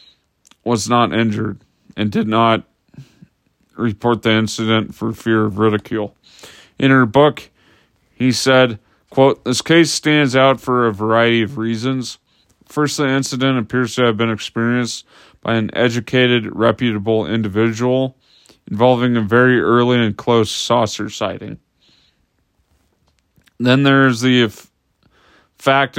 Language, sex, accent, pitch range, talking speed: English, male, American, 110-130 Hz, 120 wpm